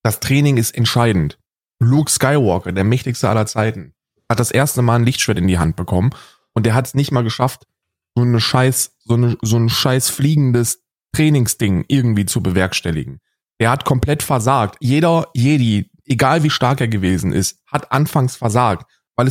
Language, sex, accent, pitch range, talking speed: German, male, German, 120-150 Hz, 175 wpm